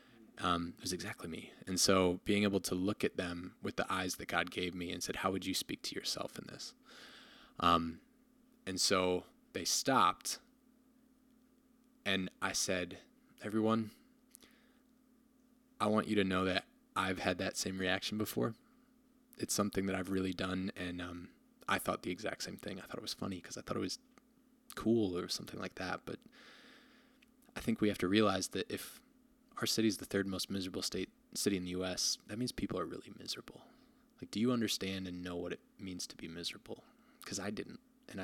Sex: male